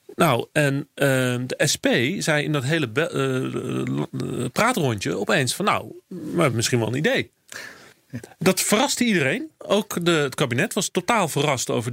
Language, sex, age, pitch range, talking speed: Dutch, male, 40-59, 120-175 Hz, 160 wpm